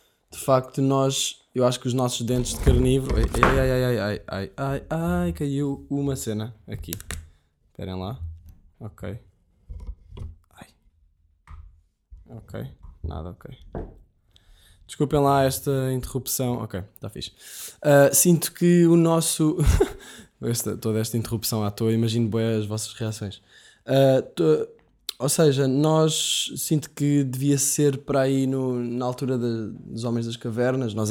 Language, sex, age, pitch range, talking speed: Portuguese, male, 20-39, 110-140 Hz, 135 wpm